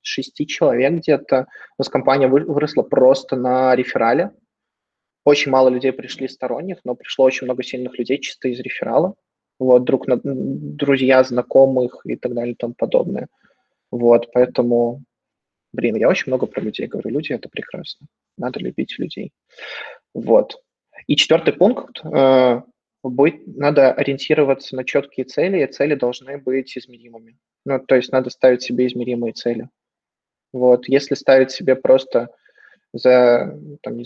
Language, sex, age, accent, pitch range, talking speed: Russian, male, 20-39, native, 125-140 Hz, 145 wpm